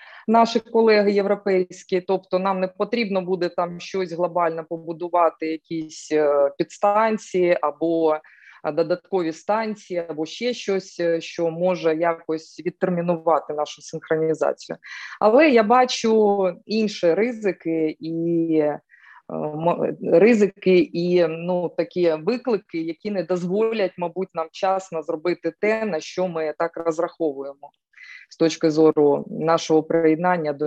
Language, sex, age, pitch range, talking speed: Ukrainian, female, 20-39, 165-205 Hz, 110 wpm